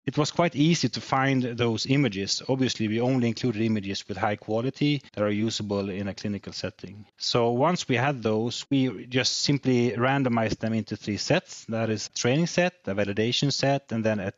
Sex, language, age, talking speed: male, English, 30-49, 195 wpm